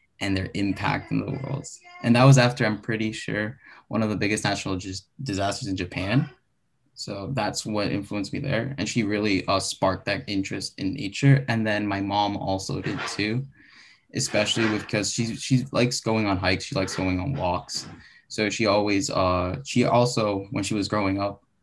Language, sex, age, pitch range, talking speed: English, male, 10-29, 100-140 Hz, 190 wpm